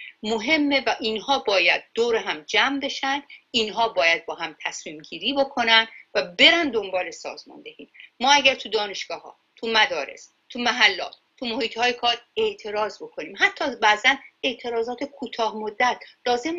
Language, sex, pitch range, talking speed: Persian, female, 210-315 Hz, 150 wpm